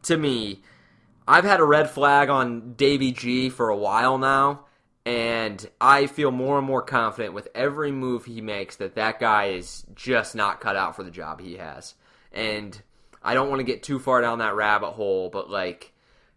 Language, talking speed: English, 195 wpm